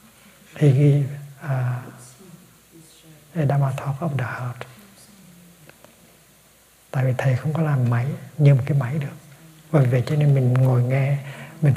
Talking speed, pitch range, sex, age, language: 145 wpm, 130-160 Hz, male, 60-79, Vietnamese